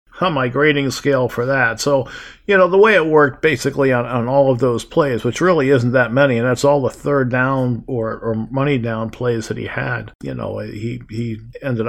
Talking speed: 220 wpm